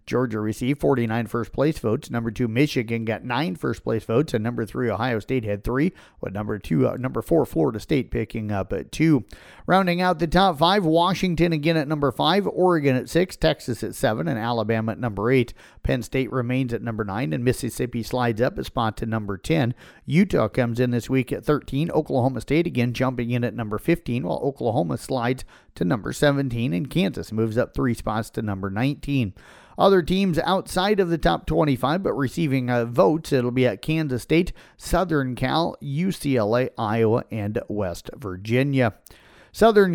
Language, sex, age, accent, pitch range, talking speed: English, male, 40-59, American, 115-150 Hz, 180 wpm